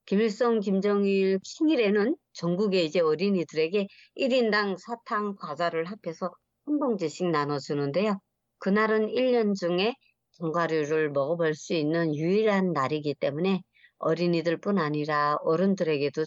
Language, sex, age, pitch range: Korean, male, 50-69, 155-210 Hz